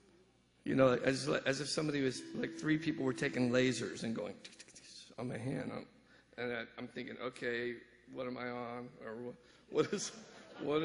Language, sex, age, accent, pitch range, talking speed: English, male, 50-69, American, 120-150 Hz, 205 wpm